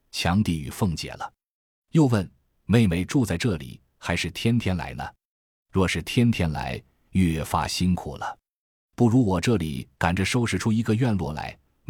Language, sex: Chinese, male